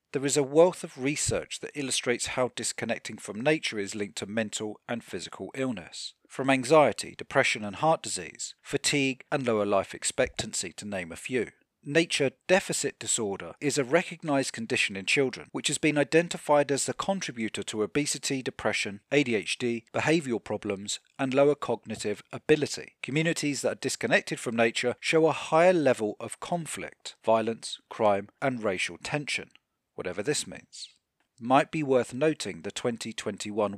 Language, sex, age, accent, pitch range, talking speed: English, male, 40-59, British, 110-150 Hz, 155 wpm